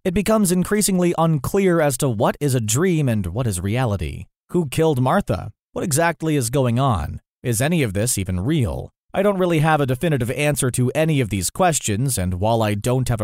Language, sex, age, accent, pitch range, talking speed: English, male, 30-49, American, 120-170 Hz, 205 wpm